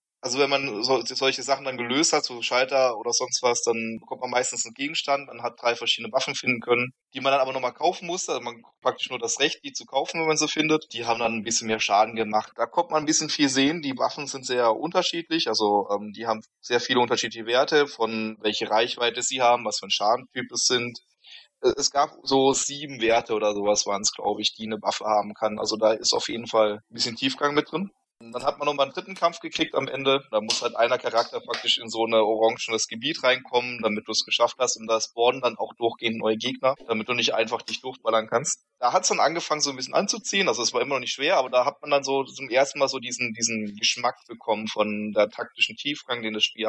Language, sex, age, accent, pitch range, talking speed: German, male, 20-39, German, 110-135 Hz, 250 wpm